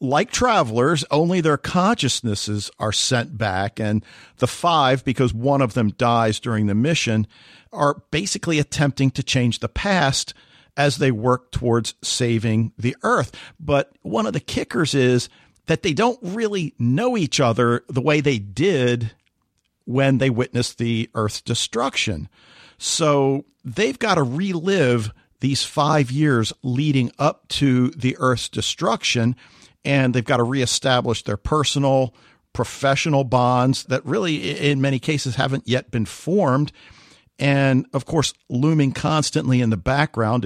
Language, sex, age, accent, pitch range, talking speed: English, male, 50-69, American, 120-145 Hz, 140 wpm